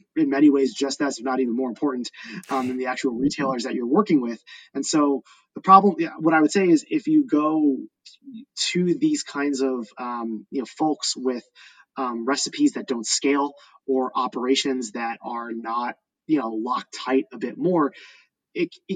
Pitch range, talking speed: 125-150 Hz, 185 wpm